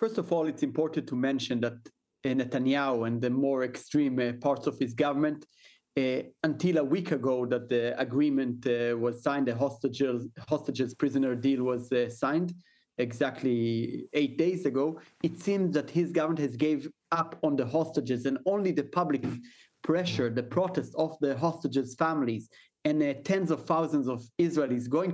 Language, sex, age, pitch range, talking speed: English, male, 30-49, 130-165 Hz, 170 wpm